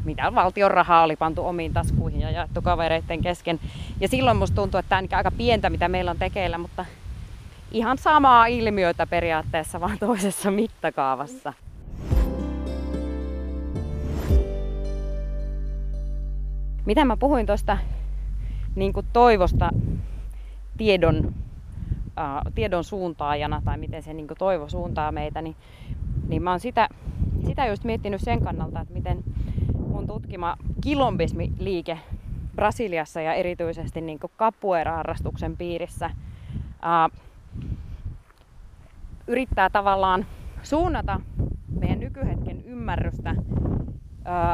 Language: Finnish